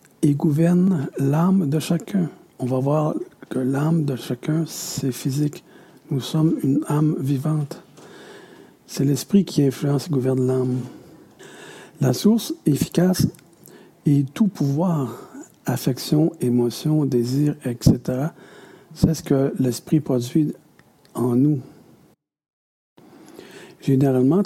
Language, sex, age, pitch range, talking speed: French, male, 60-79, 130-175 Hz, 110 wpm